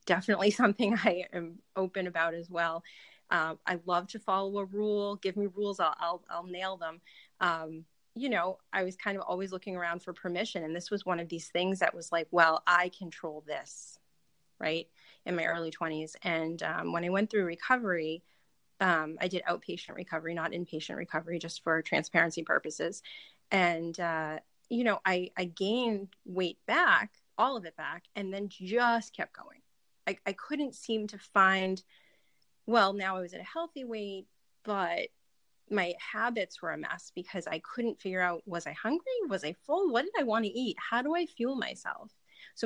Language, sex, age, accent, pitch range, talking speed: English, female, 30-49, American, 170-210 Hz, 190 wpm